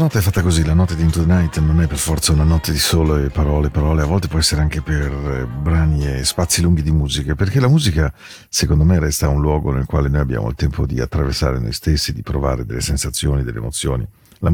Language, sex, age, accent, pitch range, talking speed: Spanish, male, 50-69, Italian, 75-95 Hz, 245 wpm